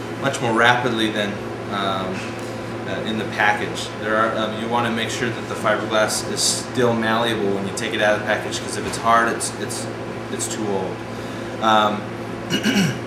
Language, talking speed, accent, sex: English, 185 wpm, American, male